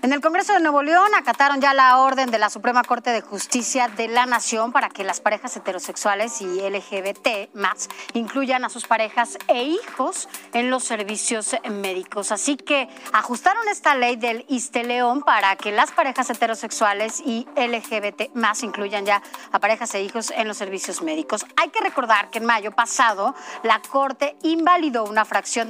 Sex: female